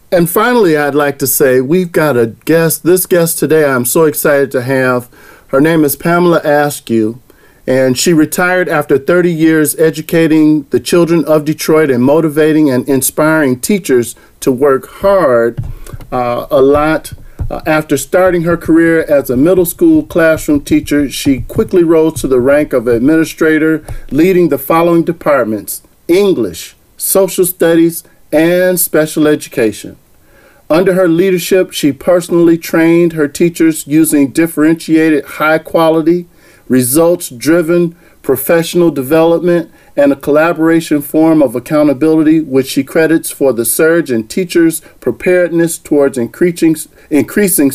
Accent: American